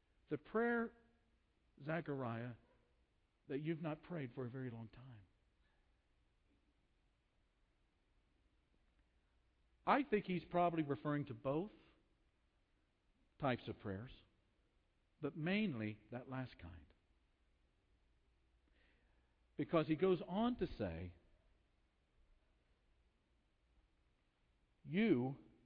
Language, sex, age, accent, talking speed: English, male, 50-69, American, 80 wpm